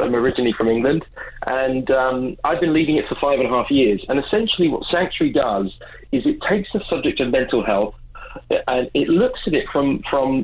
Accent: British